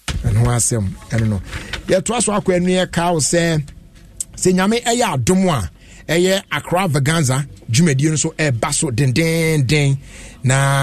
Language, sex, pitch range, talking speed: English, male, 130-160 Hz, 115 wpm